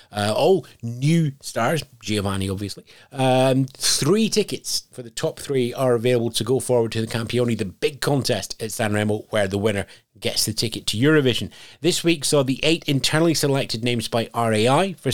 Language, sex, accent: English, male, British